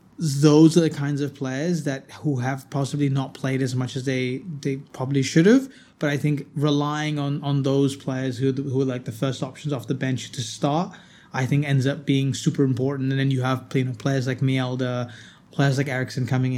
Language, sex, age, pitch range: English, male, 20-39, 135-160 Hz